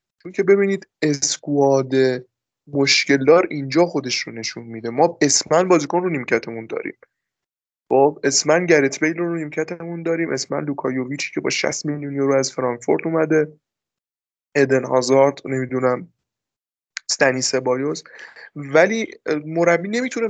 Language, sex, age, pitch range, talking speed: Persian, male, 20-39, 135-170 Hz, 115 wpm